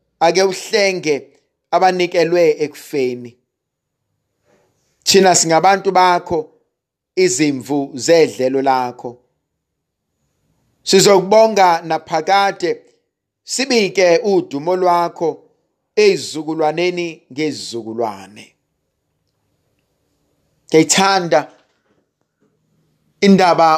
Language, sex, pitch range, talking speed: English, male, 145-195 Hz, 50 wpm